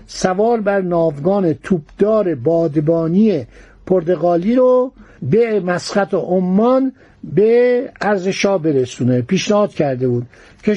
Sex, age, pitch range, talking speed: male, 60-79, 170-220 Hz, 95 wpm